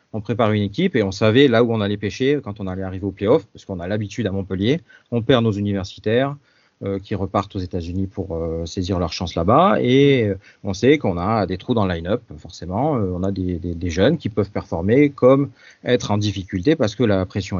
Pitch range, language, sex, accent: 95-120 Hz, French, male, French